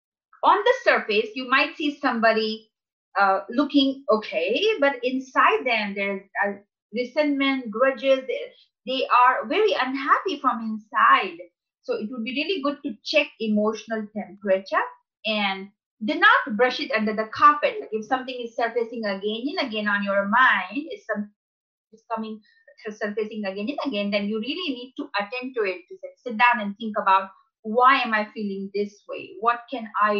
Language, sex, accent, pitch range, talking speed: English, female, Indian, 215-295 Hz, 170 wpm